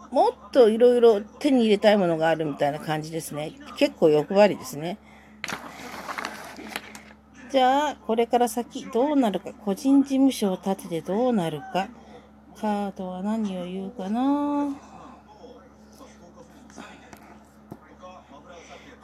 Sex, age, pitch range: female, 40-59, 195-265 Hz